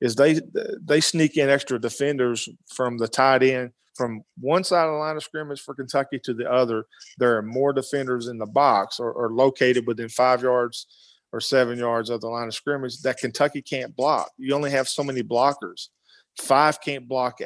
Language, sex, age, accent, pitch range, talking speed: English, male, 40-59, American, 120-140 Hz, 200 wpm